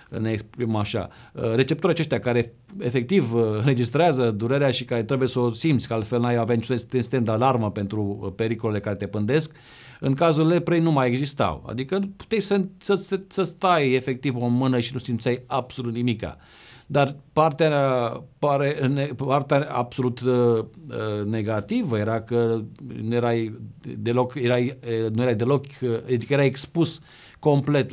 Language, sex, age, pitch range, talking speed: Romanian, male, 50-69, 110-135 Hz, 140 wpm